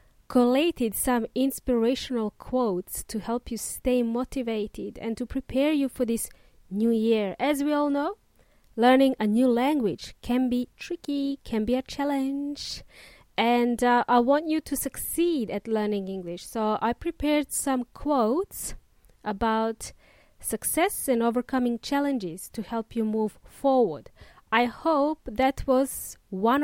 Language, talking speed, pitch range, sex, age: English, 140 wpm, 225-290 Hz, female, 20-39